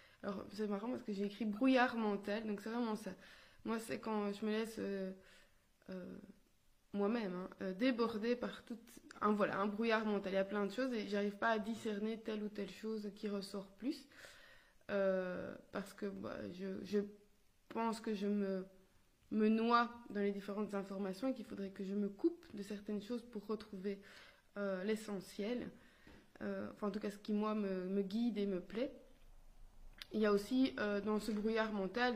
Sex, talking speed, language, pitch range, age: female, 190 wpm, French, 200-230 Hz, 20-39